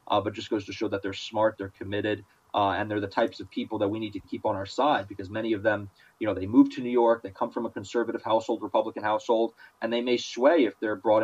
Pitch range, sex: 100-115 Hz, male